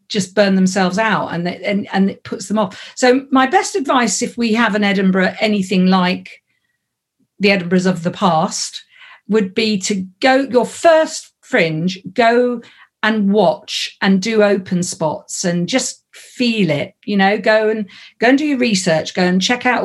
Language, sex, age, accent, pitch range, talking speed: English, female, 50-69, British, 185-230 Hz, 175 wpm